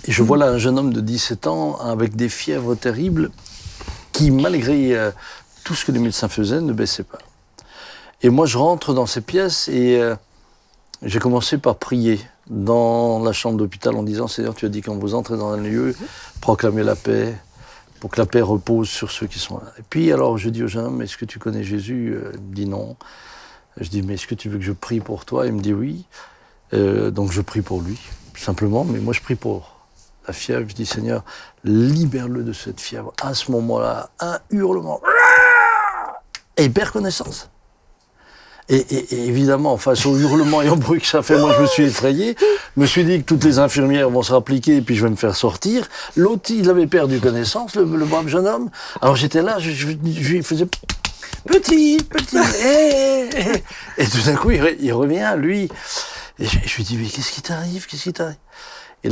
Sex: male